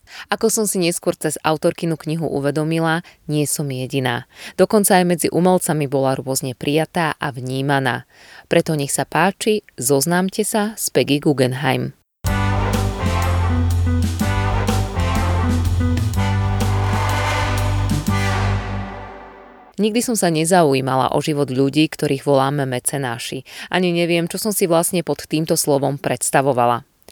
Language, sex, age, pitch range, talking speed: Slovak, female, 20-39, 125-175 Hz, 110 wpm